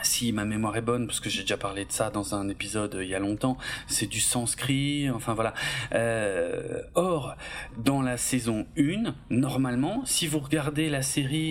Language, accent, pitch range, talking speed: French, French, 115-150 Hz, 195 wpm